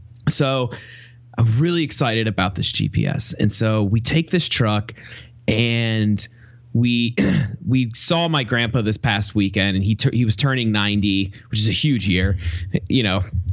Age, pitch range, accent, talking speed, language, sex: 20-39, 105-135 Hz, American, 155 wpm, English, male